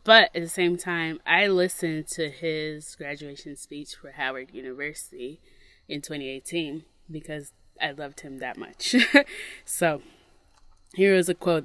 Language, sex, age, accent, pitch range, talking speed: English, female, 20-39, American, 145-180 Hz, 140 wpm